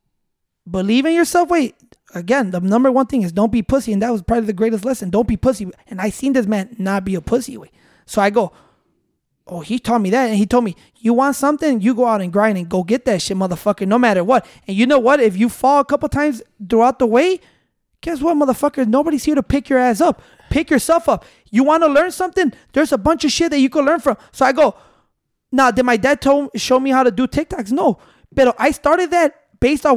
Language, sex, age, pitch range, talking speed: English, male, 20-39, 230-295 Hz, 245 wpm